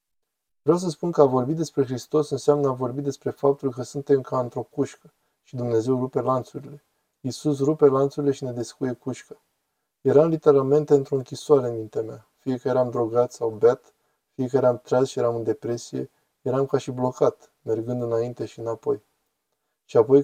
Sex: male